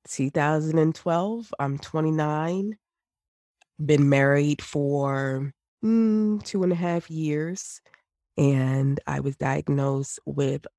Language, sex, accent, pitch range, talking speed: English, female, American, 140-155 Hz, 95 wpm